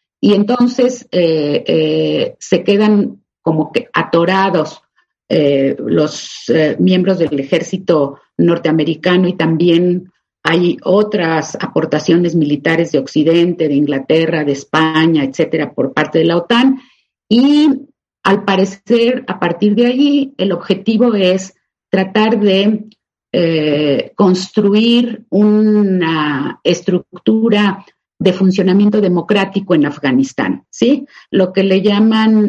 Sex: female